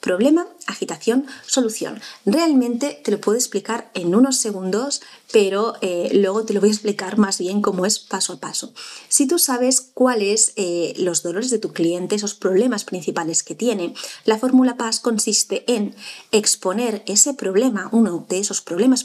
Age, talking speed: 30-49, 165 wpm